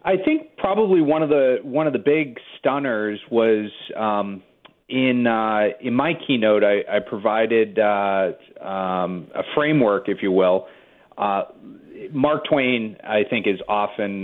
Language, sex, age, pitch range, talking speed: English, male, 40-59, 95-115 Hz, 150 wpm